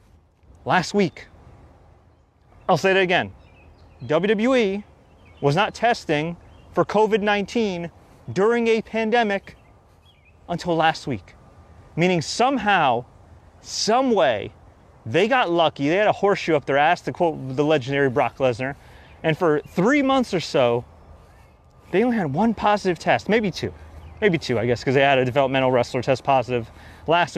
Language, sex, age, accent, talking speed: English, male, 30-49, American, 140 wpm